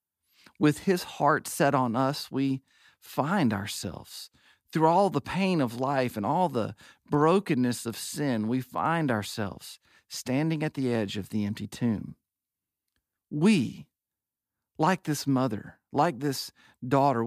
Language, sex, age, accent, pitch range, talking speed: English, male, 40-59, American, 115-150 Hz, 135 wpm